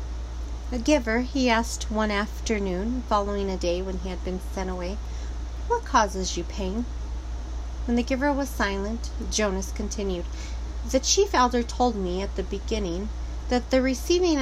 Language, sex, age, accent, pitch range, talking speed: English, female, 40-59, American, 170-240 Hz, 155 wpm